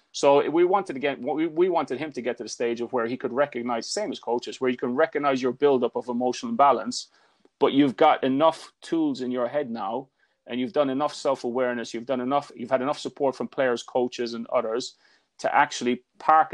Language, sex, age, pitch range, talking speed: English, male, 30-49, 120-145 Hz, 215 wpm